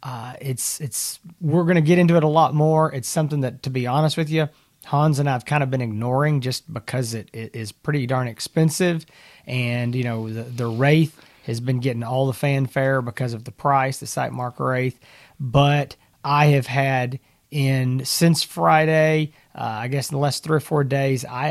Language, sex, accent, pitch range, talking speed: English, male, American, 120-150 Hz, 200 wpm